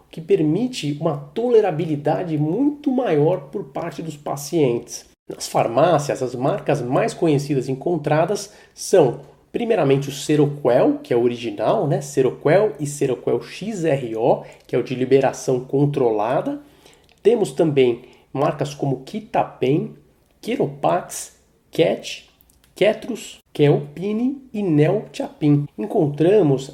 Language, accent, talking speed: Portuguese, Brazilian, 110 wpm